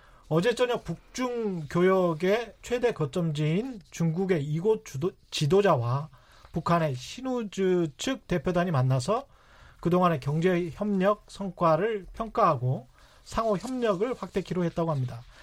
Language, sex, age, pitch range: Korean, male, 40-59, 155-210 Hz